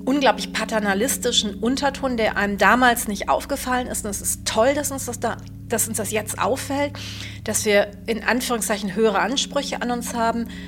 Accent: German